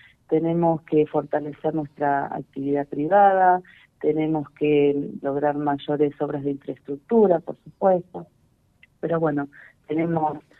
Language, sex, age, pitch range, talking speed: Spanish, female, 40-59, 145-175 Hz, 100 wpm